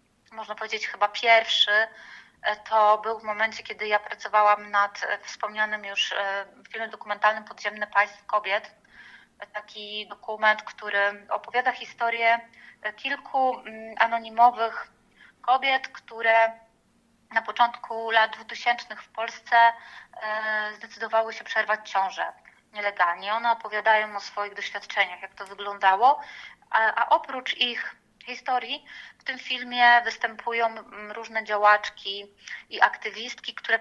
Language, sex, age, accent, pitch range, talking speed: Polish, female, 20-39, native, 210-245 Hz, 110 wpm